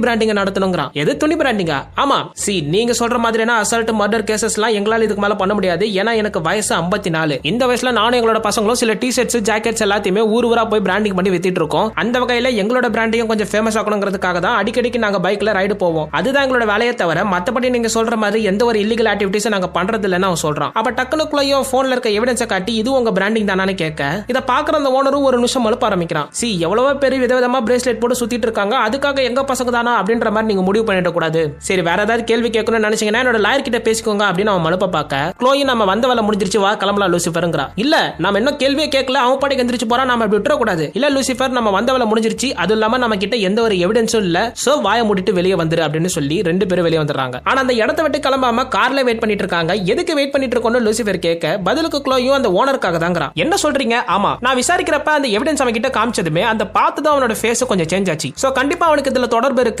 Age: 20-39